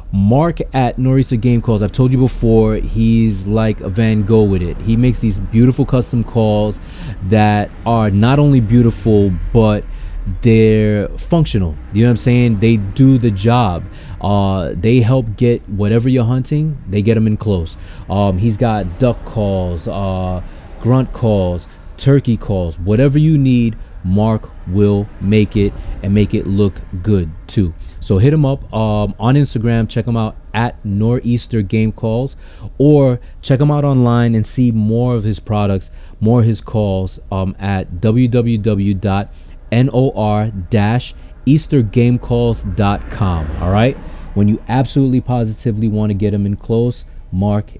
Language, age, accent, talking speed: English, 20-39, American, 150 wpm